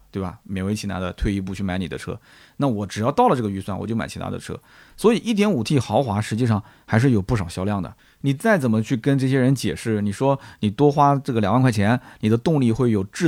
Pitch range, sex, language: 105-140 Hz, male, Chinese